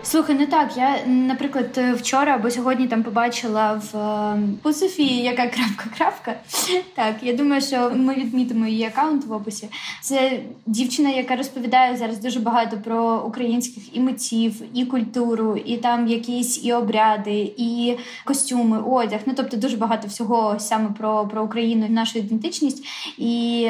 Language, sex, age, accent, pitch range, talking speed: Ukrainian, female, 20-39, native, 220-255 Hz, 145 wpm